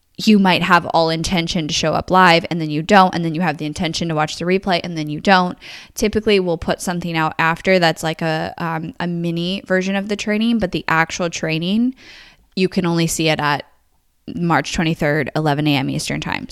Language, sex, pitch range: English, female, 160-195 Hz